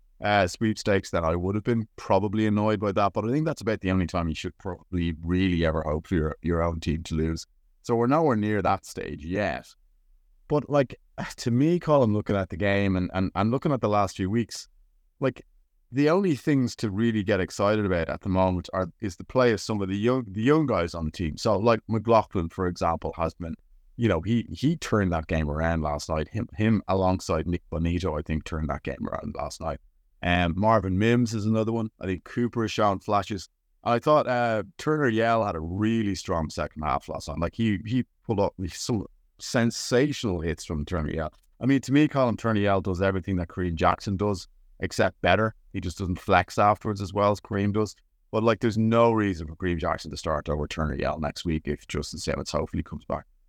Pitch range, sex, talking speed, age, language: 85-110 Hz, male, 220 wpm, 30-49, English